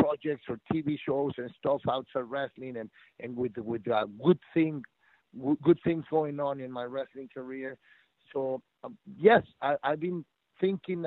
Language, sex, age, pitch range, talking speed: English, male, 50-69, 120-160 Hz, 170 wpm